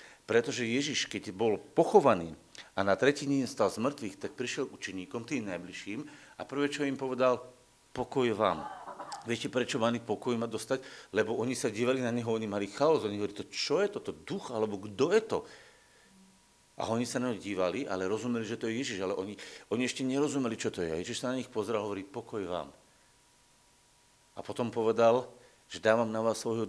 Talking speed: 195 wpm